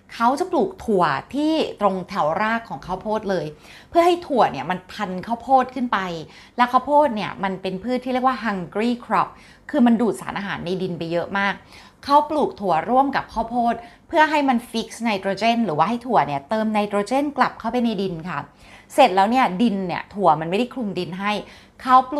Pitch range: 180-245 Hz